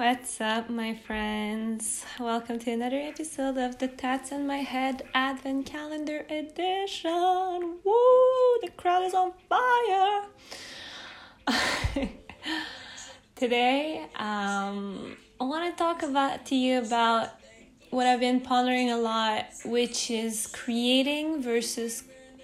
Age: 20-39